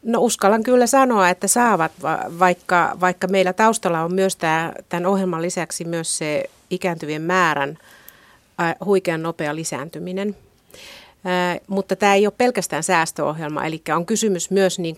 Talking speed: 145 wpm